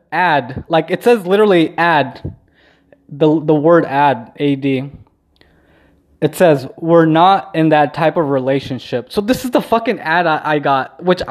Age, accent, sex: 20-39, American, male